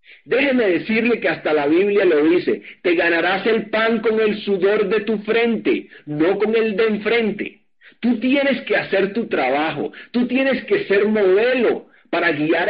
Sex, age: male, 50-69